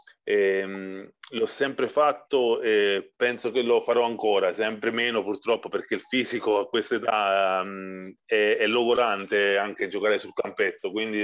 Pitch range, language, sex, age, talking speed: 95-115 Hz, Italian, male, 30-49, 145 wpm